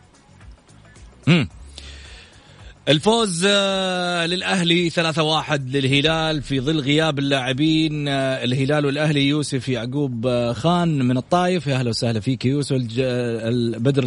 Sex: male